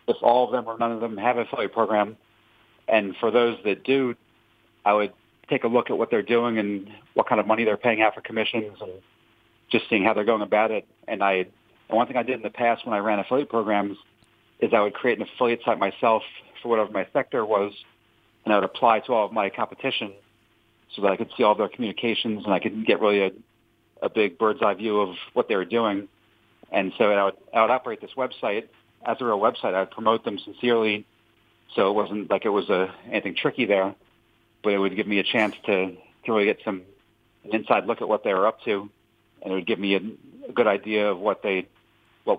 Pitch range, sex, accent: 100-115 Hz, male, American